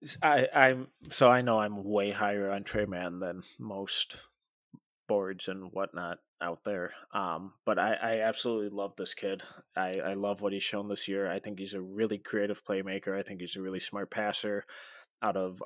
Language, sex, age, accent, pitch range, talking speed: English, male, 20-39, American, 95-110 Hz, 190 wpm